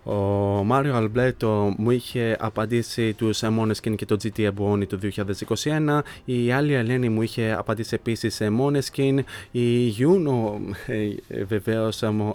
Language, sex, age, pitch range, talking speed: Greek, male, 20-39, 105-125 Hz, 125 wpm